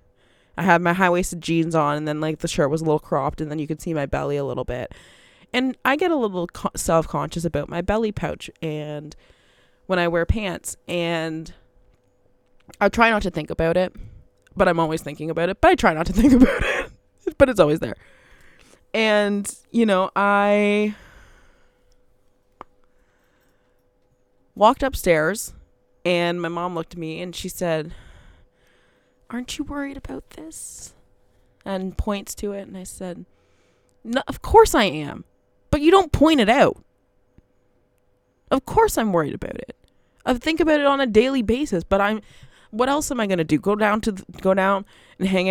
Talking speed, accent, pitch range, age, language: 180 wpm, American, 145-215 Hz, 20-39, English